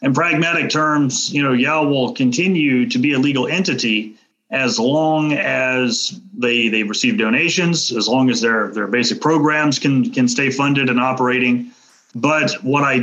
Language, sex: English, male